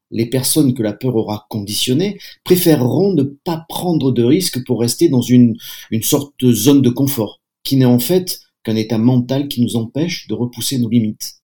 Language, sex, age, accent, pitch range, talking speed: French, male, 50-69, French, 115-140 Hz, 195 wpm